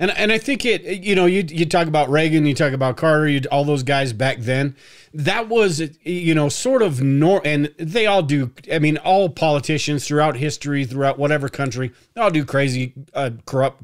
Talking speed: 210 wpm